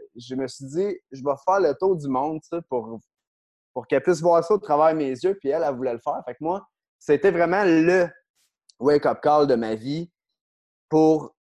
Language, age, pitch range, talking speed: English, 30-49, 125-170 Hz, 220 wpm